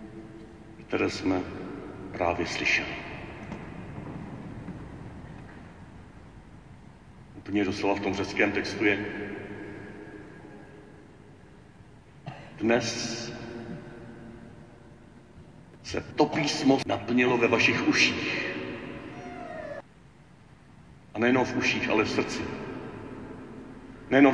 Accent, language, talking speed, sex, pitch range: native, Czech, 70 wpm, male, 120-145 Hz